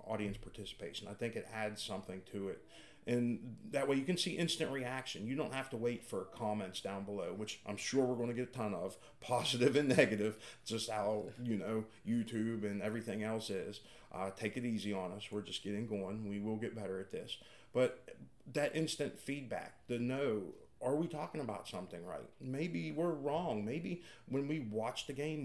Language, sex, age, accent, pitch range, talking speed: English, male, 40-59, American, 105-125 Hz, 200 wpm